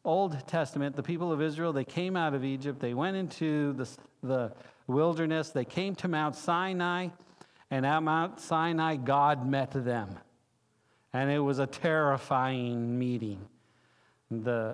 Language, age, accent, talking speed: English, 50-69, American, 145 wpm